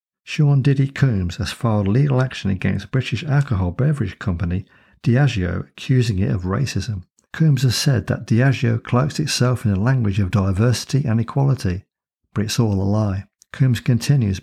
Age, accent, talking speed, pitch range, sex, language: 60-79, British, 160 wpm, 100-130 Hz, male, English